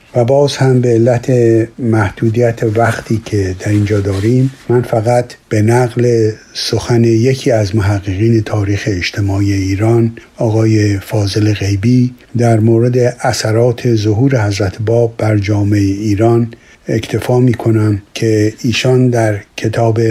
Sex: male